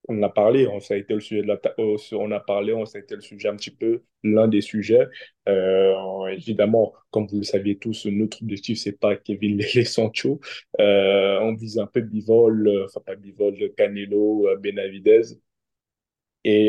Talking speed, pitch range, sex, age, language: 185 wpm, 105-120 Hz, male, 20-39, French